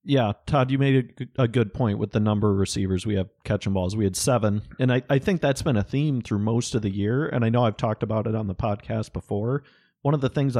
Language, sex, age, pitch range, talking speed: English, male, 30-49, 105-125 Hz, 265 wpm